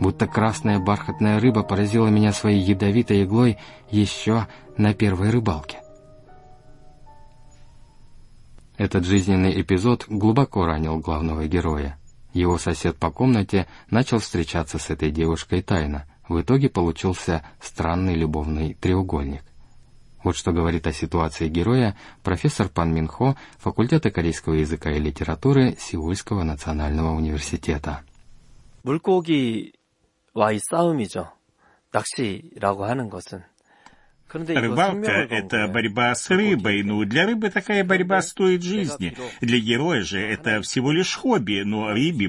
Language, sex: Russian, male